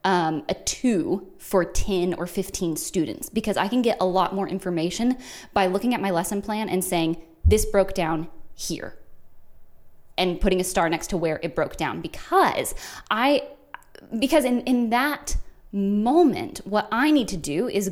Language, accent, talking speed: English, American, 170 wpm